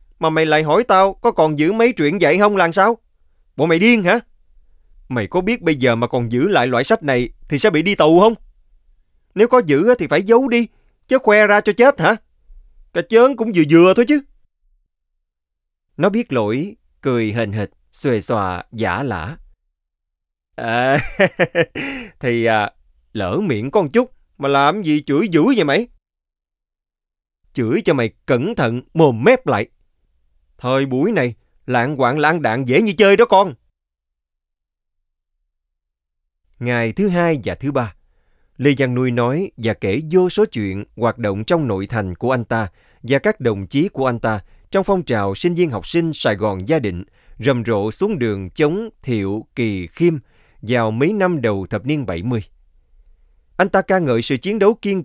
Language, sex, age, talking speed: Vietnamese, male, 20-39, 180 wpm